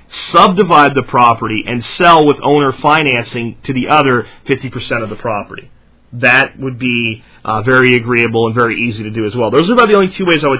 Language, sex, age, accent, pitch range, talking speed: French, male, 40-59, American, 120-150 Hz, 215 wpm